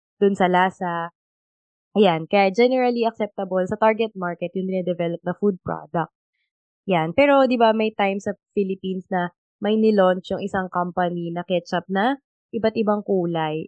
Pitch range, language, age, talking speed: 180-225 Hz, Filipino, 20-39, 150 wpm